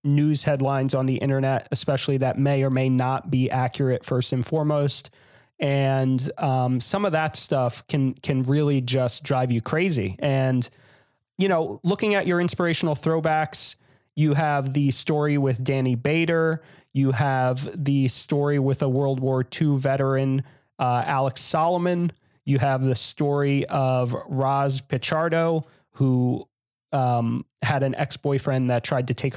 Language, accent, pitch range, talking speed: English, American, 130-150 Hz, 150 wpm